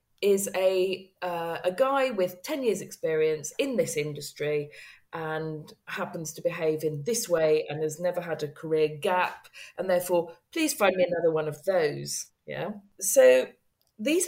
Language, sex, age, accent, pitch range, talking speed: English, female, 40-59, British, 180-285 Hz, 160 wpm